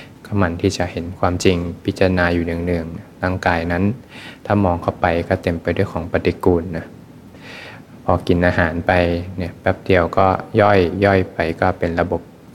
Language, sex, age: Thai, male, 20-39